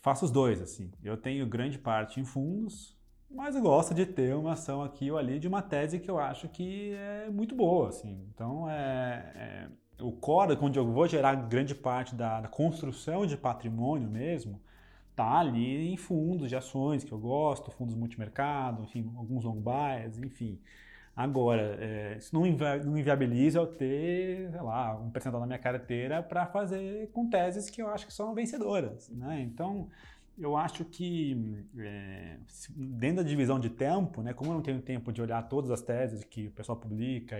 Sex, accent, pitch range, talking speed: male, Brazilian, 115-155 Hz, 180 wpm